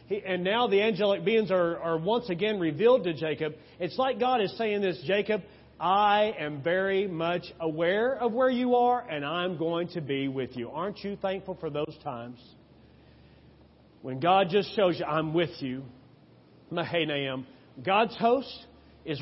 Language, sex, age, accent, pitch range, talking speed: English, male, 40-59, American, 160-230 Hz, 165 wpm